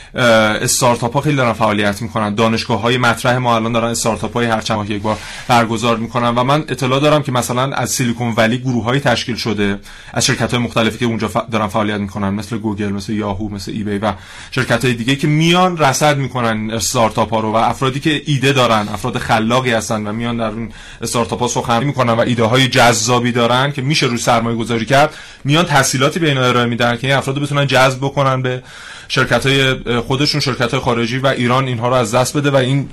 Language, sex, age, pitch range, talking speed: Persian, male, 30-49, 115-130 Hz, 205 wpm